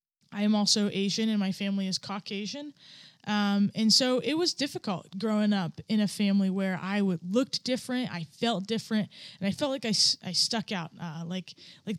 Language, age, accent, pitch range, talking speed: English, 20-39, American, 180-220 Hz, 195 wpm